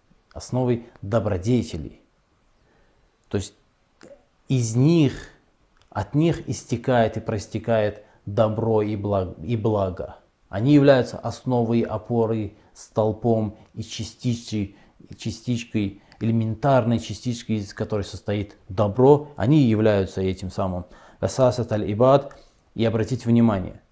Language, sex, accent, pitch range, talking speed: Russian, male, native, 100-115 Hz, 90 wpm